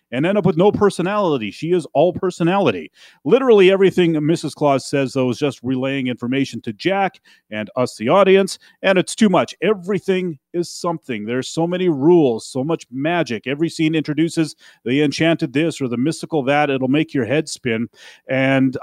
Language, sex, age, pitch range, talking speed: English, male, 30-49, 130-175 Hz, 180 wpm